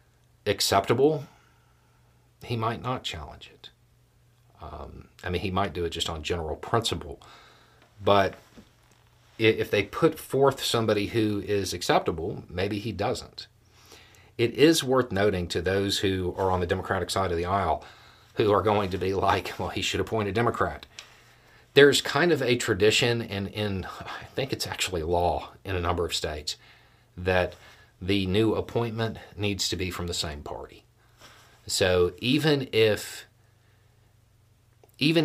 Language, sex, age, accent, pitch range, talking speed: English, male, 40-59, American, 90-120 Hz, 150 wpm